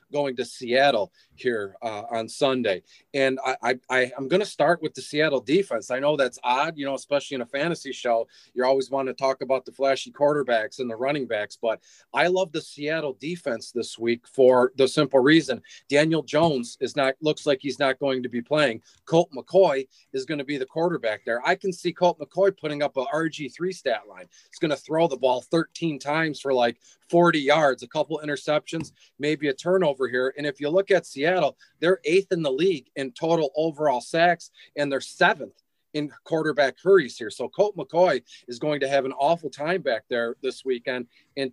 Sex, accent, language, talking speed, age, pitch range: male, American, English, 205 wpm, 30-49, 130-165 Hz